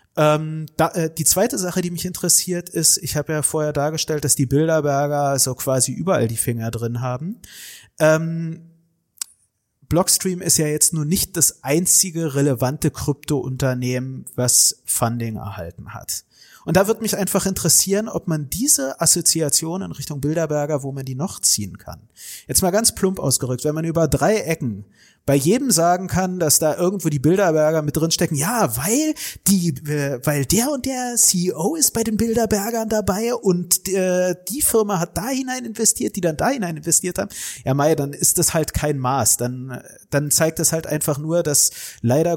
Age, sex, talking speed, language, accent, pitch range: 30-49, male, 175 wpm, German, German, 140-180 Hz